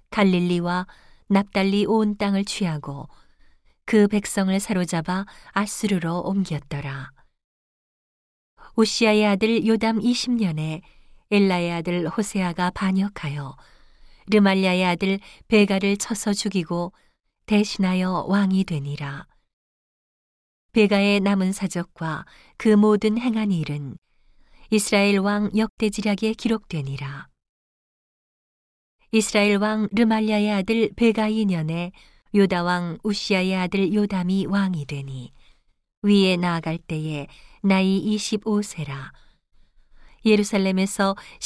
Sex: female